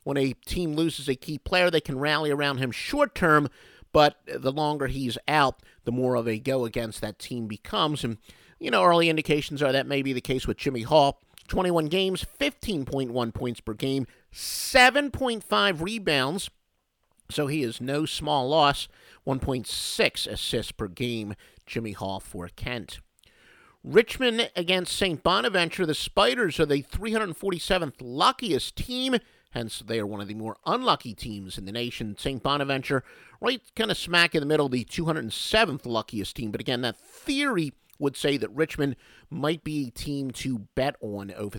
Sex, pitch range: male, 115-170 Hz